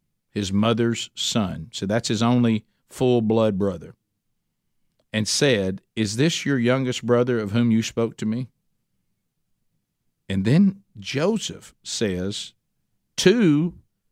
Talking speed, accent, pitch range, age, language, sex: 115 wpm, American, 125-175 Hz, 50-69, English, male